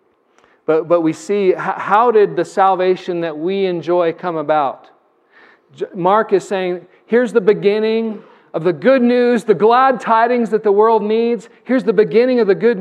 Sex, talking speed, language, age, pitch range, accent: male, 170 wpm, English, 40-59, 155-230 Hz, American